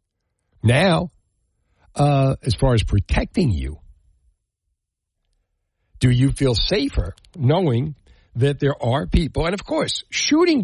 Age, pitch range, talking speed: 60-79, 105-145 Hz, 115 wpm